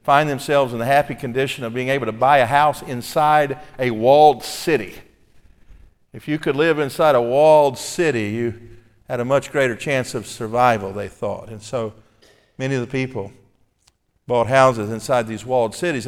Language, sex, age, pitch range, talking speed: English, male, 50-69, 115-145 Hz, 175 wpm